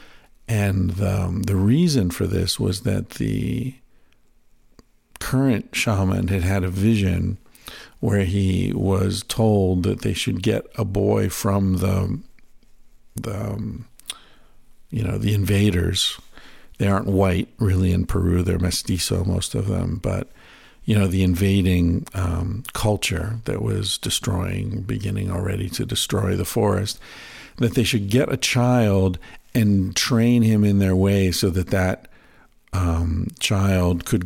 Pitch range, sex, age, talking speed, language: 95-110 Hz, male, 50-69, 135 wpm, English